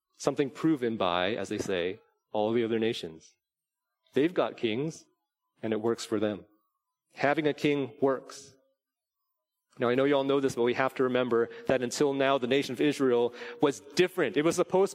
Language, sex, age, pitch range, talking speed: English, male, 30-49, 125-180 Hz, 185 wpm